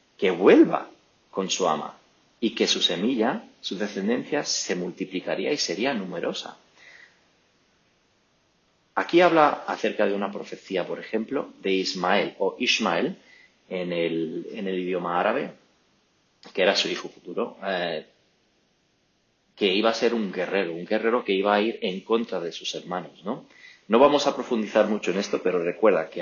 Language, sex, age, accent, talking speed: English, male, 40-59, Spanish, 155 wpm